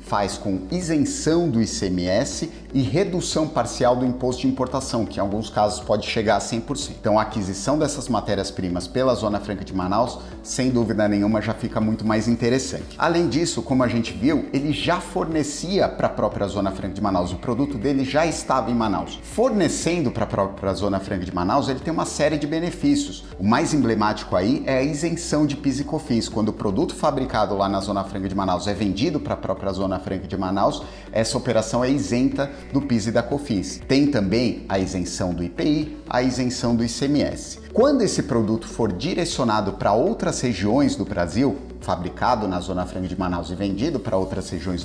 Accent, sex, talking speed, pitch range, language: Brazilian, male, 195 wpm, 100-140 Hz, Portuguese